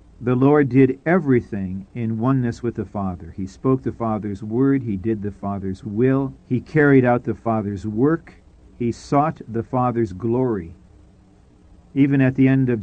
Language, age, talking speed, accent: English, 50-69, 165 wpm, American